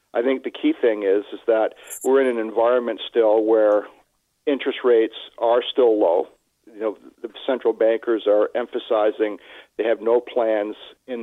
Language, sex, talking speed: English, male, 165 wpm